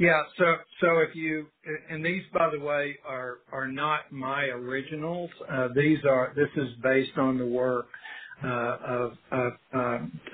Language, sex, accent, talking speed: English, male, American, 155 wpm